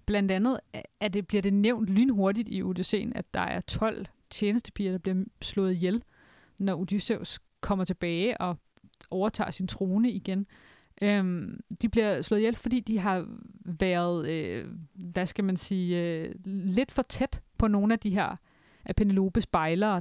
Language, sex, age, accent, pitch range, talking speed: Danish, female, 30-49, native, 185-225 Hz, 160 wpm